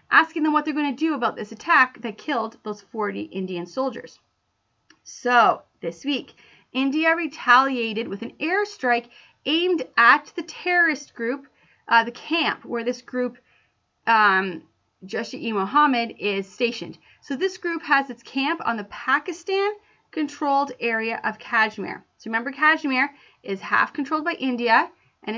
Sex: female